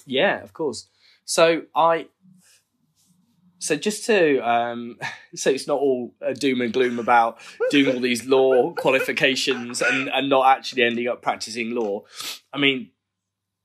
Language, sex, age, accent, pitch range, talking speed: English, male, 10-29, British, 95-120 Hz, 140 wpm